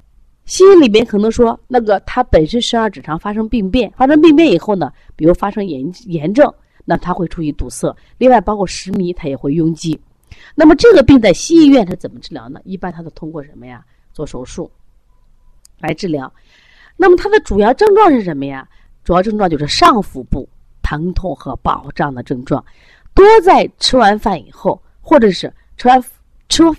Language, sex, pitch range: Chinese, female, 155-250 Hz